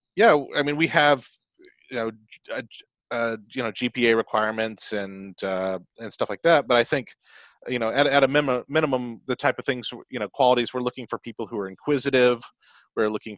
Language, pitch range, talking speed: English, 110-130 Hz, 200 wpm